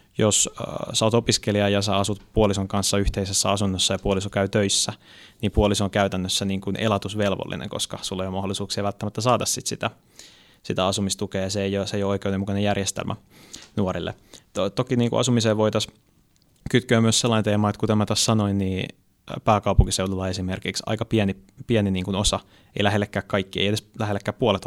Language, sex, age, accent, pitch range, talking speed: Finnish, male, 20-39, native, 95-105 Hz, 170 wpm